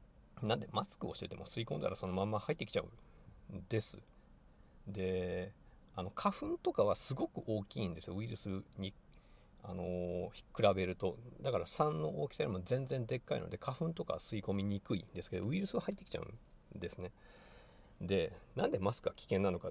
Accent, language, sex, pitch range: native, Japanese, male, 90-115 Hz